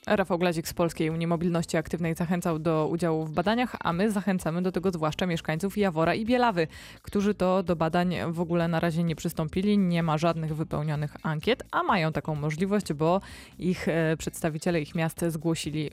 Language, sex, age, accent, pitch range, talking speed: Polish, female, 20-39, native, 155-185 Hz, 175 wpm